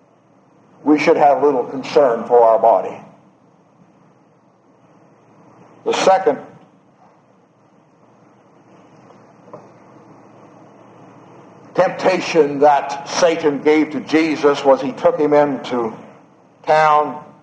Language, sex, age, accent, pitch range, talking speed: English, male, 60-79, American, 140-230 Hz, 75 wpm